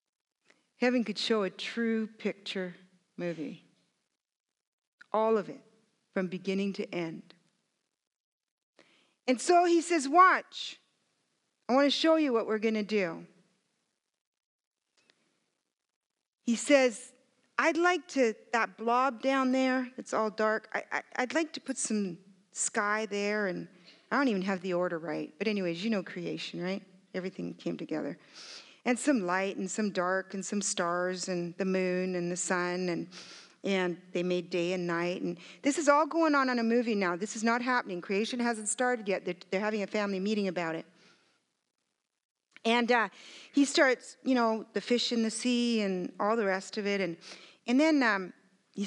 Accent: American